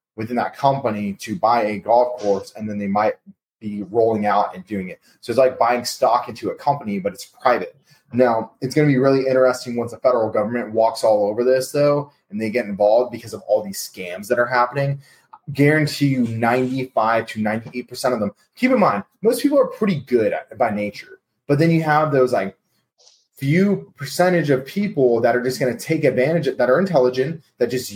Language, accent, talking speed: English, American, 210 wpm